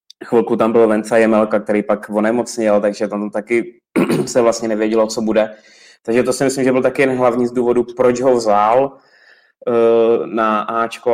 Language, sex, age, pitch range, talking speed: Czech, male, 20-39, 105-115 Hz, 165 wpm